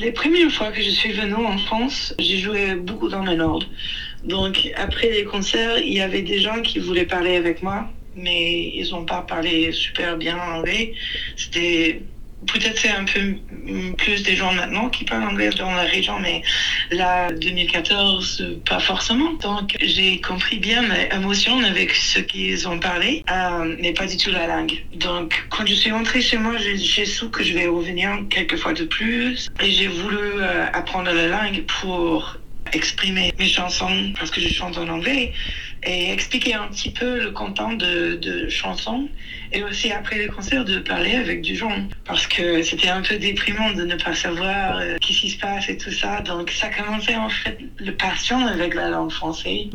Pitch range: 170-215 Hz